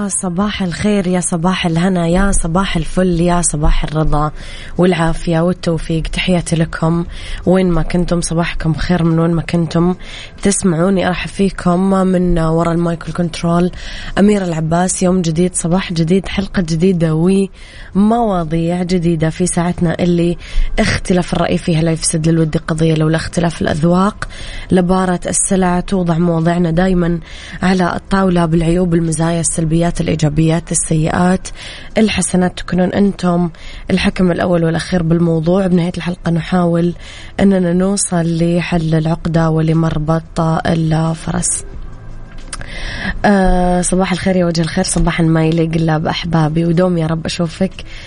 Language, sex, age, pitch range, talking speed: Arabic, female, 20-39, 165-180 Hz, 120 wpm